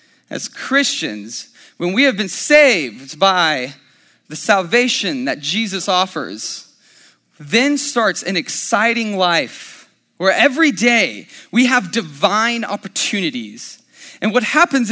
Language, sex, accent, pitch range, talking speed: English, male, American, 190-245 Hz, 115 wpm